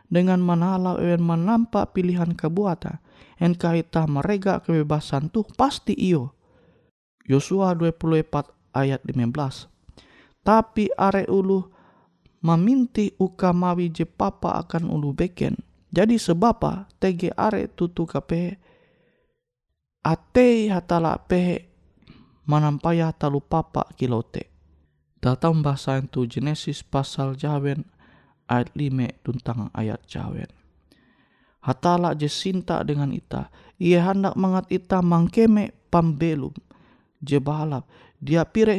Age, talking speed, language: 20-39, 100 wpm, Indonesian